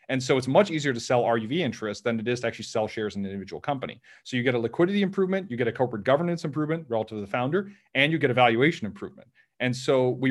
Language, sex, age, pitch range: English, male, 30-49, 110-140 Hz